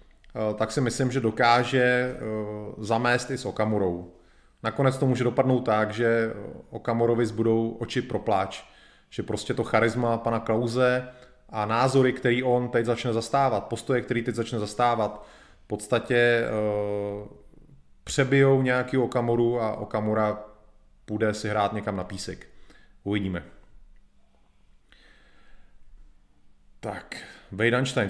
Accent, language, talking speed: native, Czech, 115 wpm